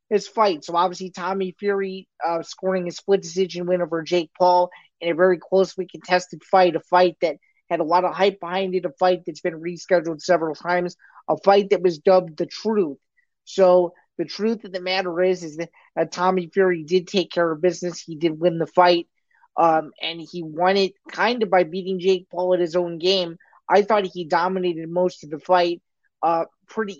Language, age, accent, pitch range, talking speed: English, 20-39, American, 170-190 Hz, 205 wpm